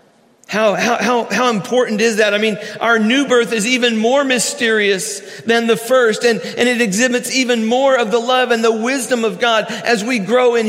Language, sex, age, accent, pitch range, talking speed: English, male, 50-69, American, 170-235 Hz, 210 wpm